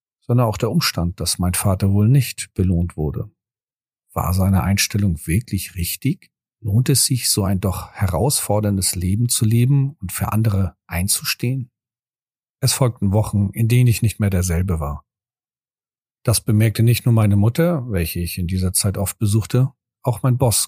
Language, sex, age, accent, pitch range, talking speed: German, male, 40-59, German, 95-120 Hz, 165 wpm